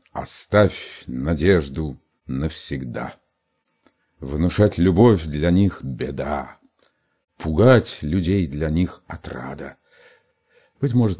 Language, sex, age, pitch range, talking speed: Russian, male, 50-69, 80-115 Hz, 80 wpm